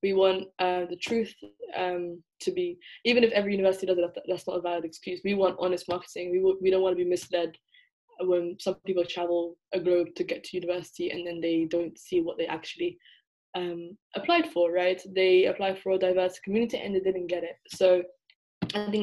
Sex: female